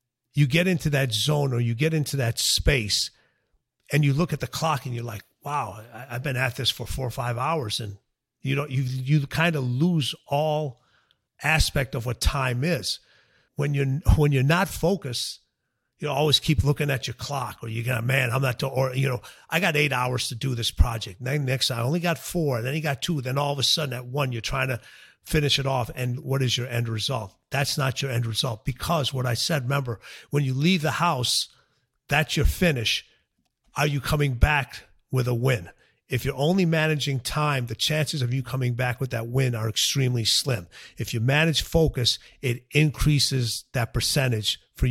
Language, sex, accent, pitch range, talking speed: English, male, American, 120-145 Hz, 210 wpm